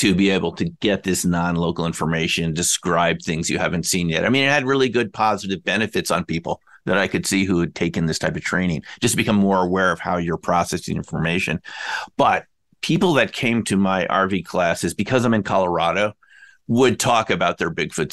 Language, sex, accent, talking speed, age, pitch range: English, male, American, 205 wpm, 50-69, 90-120 Hz